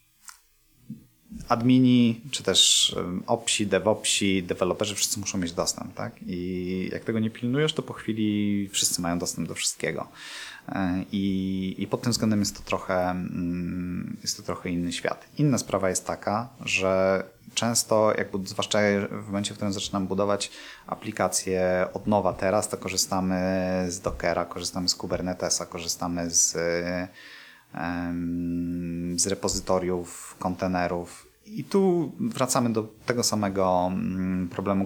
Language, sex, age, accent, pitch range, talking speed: Polish, male, 30-49, native, 90-110 Hz, 125 wpm